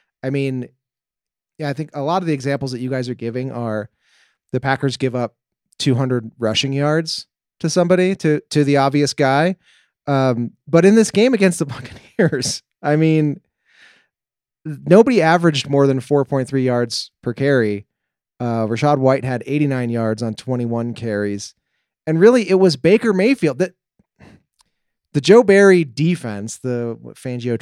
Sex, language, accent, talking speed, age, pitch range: male, English, American, 150 wpm, 30-49, 125-175 Hz